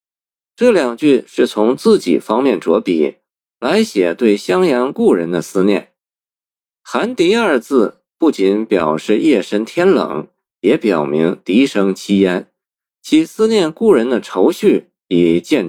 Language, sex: Chinese, male